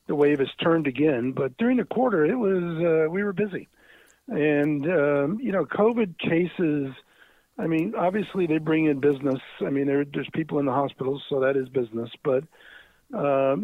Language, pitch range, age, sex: English, 135-160 Hz, 50-69, male